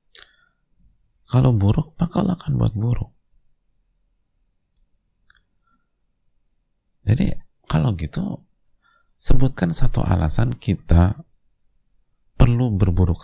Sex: male